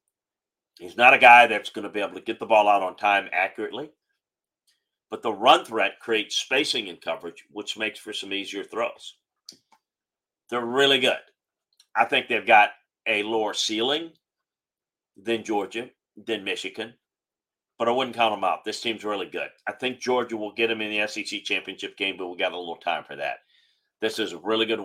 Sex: male